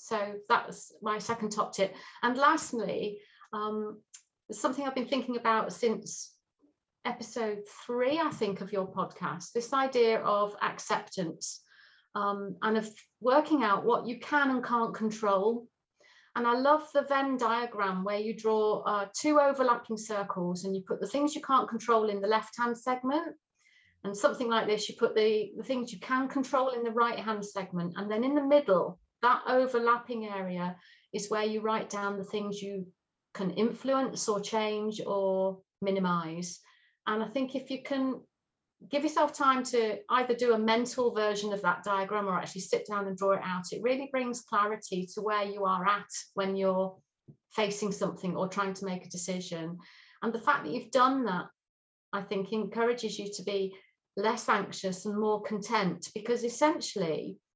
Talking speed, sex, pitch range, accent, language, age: 170 wpm, female, 200-245 Hz, British, English, 40-59